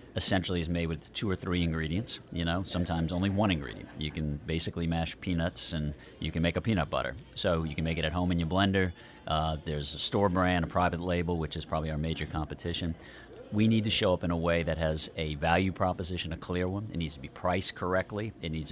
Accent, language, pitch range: American, English, 80-105 Hz